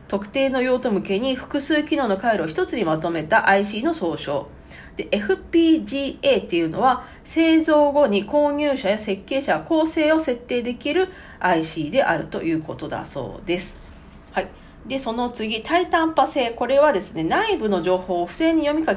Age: 40-59